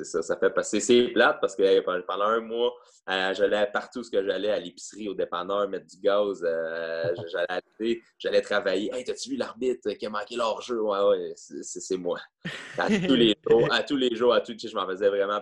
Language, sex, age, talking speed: French, male, 20-39, 220 wpm